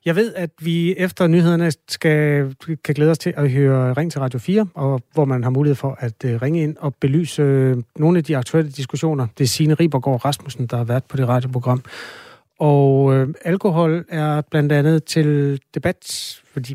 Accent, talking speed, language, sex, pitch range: native, 195 wpm, Danish, male, 130-160 Hz